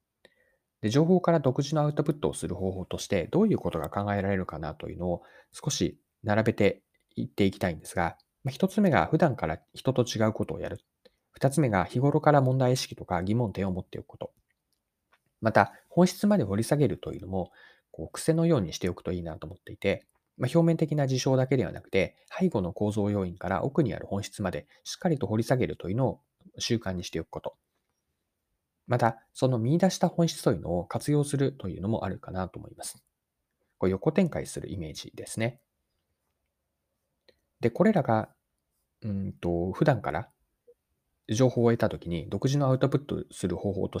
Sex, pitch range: male, 90-135 Hz